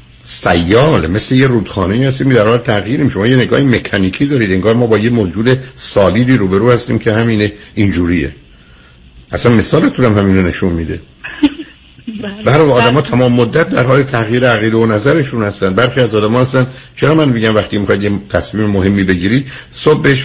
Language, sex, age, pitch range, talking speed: Persian, male, 60-79, 100-125 Hz, 170 wpm